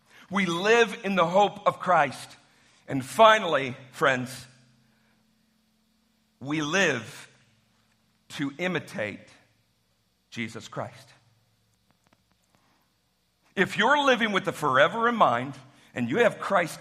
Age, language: 50-69, English